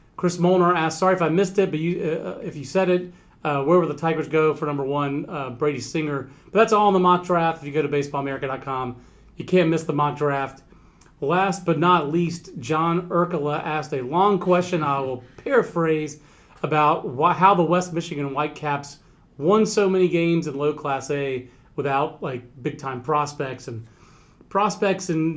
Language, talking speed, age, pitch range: English, 190 wpm, 40-59, 140-165 Hz